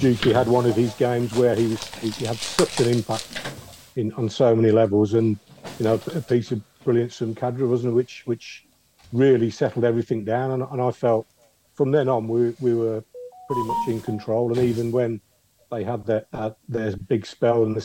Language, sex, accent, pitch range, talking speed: English, male, British, 105-125 Hz, 200 wpm